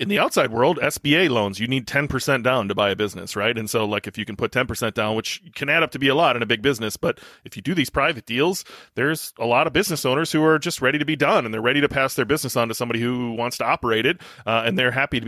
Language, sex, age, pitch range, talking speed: English, male, 30-49, 115-145 Hz, 305 wpm